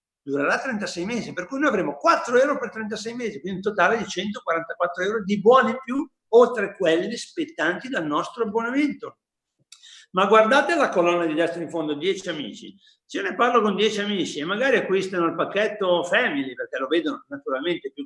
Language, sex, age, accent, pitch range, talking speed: Italian, male, 60-79, native, 170-275 Hz, 185 wpm